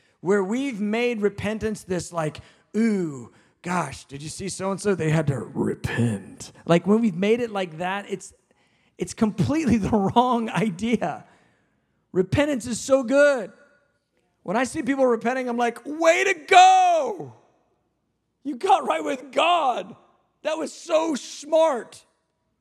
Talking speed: 140 wpm